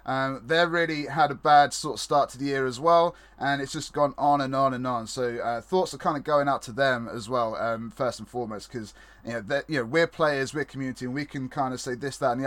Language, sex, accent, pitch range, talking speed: English, male, British, 130-165 Hz, 285 wpm